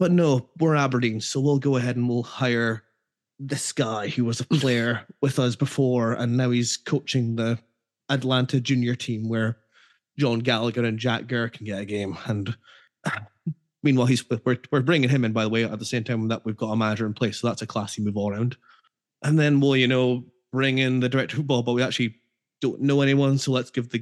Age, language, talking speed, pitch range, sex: 20-39, English, 220 wpm, 115-140 Hz, male